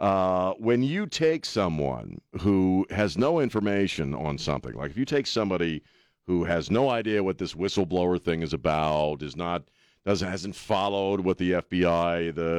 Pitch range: 85-115 Hz